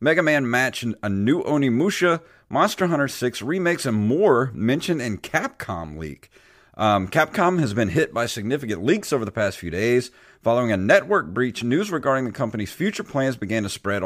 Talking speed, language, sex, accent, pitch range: 180 wpm, English, male, American, 100-140 Hz